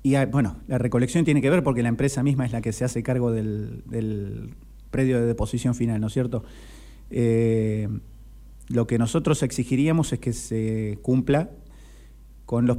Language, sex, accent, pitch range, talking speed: Spanish, male, Argentinian, 110-130 Hz, 175 wpm